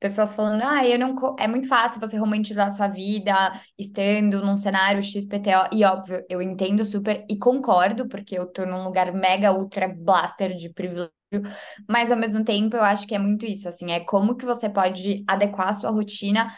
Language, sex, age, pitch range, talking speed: Portuguese, female, 20-39, 195-230 Hz, 195 wpm